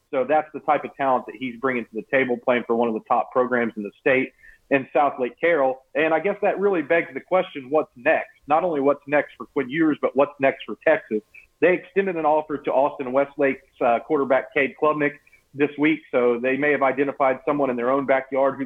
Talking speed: 230 wpm